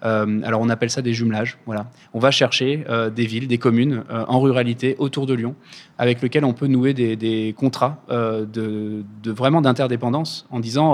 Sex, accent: male, French